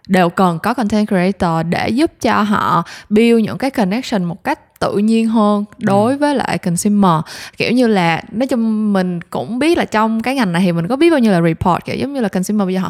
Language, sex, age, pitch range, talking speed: Vietnamese, female, 20-39, 190-240 Hz, 235 wpm